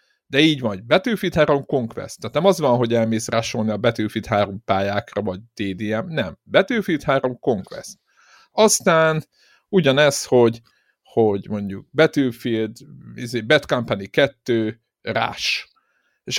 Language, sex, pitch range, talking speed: Hungarian, male, 115-160 Hz, 125 wpm